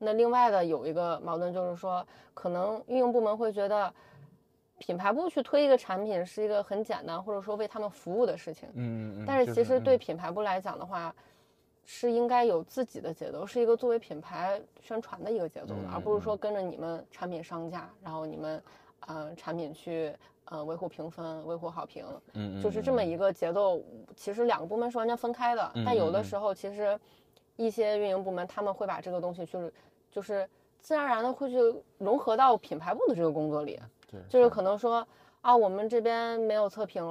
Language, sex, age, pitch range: Chinese, female, 20-39, 170-230 Hz